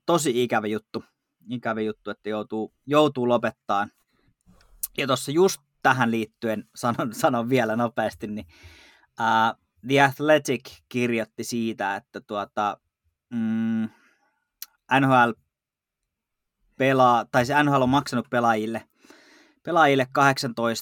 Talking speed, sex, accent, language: 100 wpm, male, native, Finnish